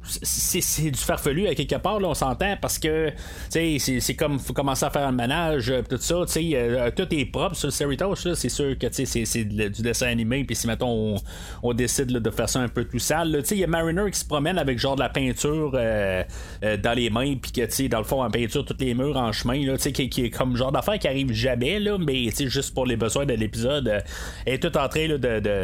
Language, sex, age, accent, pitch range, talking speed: French, male, 30-49, Canadian, 115-155 Hz, 280 wpm